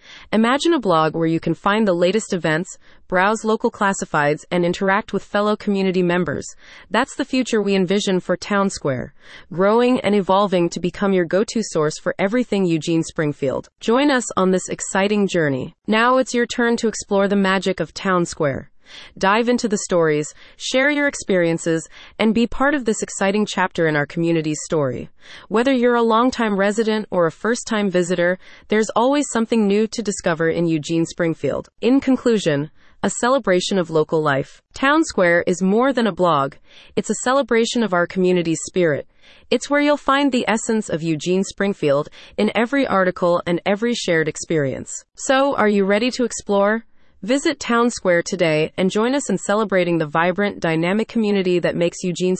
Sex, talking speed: female, 175 wpm